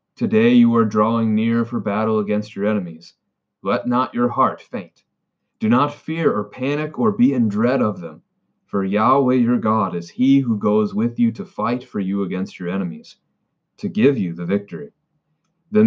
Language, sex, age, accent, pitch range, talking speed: English, male, 30-49, American, 105-145 Hz, 185 wpm